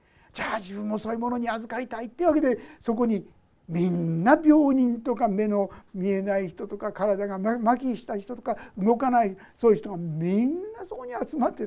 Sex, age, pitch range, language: male, 60-79, 180-260 Hz, Japanese